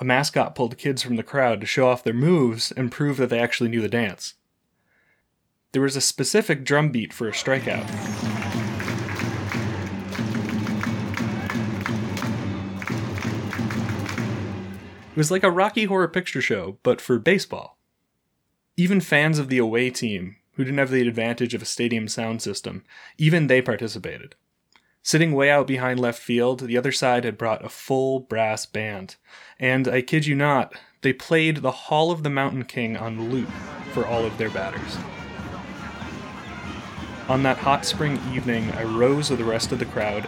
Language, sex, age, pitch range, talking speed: English, male, 20-39, 110-140 Hz, 160 wpm